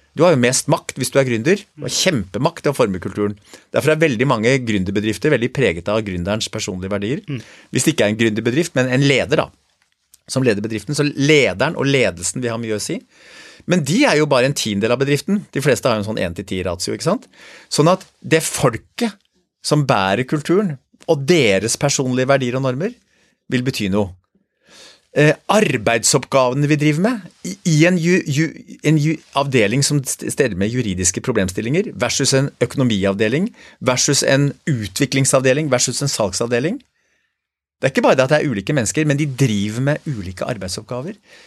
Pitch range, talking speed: 115-155 Hz, 190 wpm